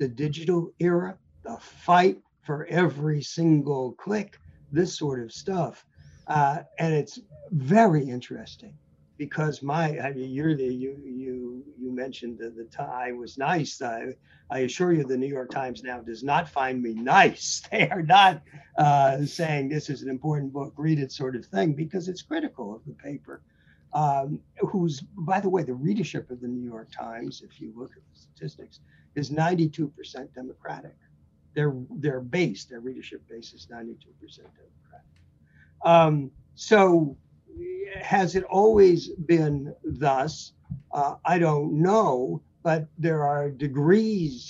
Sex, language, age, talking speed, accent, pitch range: male, English, 60-79, 150 wpm, American, 130-170 Hz